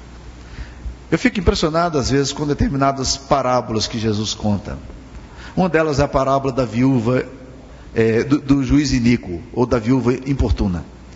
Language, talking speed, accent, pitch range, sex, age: Portuguese, 145 wpm, Brazilian, 115-185 Hz, male, 50-69